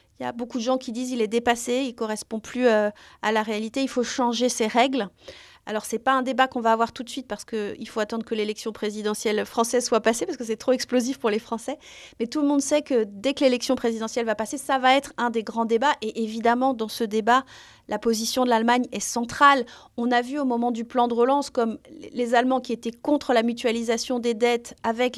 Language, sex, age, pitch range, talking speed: French, female, 30-49, 225-260 Hz, 245 wpm